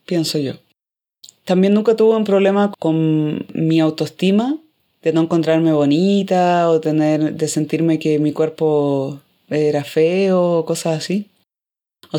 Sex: female